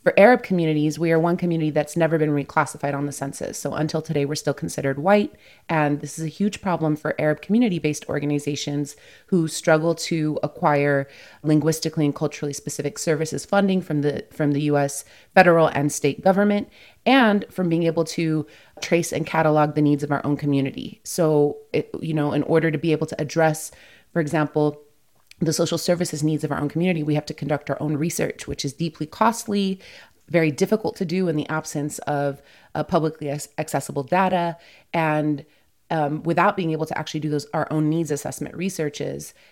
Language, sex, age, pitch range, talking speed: English, female, 30-49, 145-165 Hz, 180 wpm